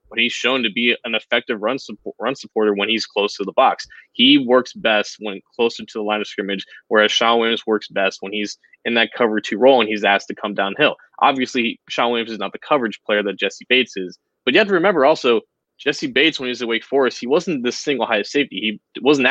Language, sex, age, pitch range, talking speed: English, male, 20-39, 105-125 Hz, 250 wpm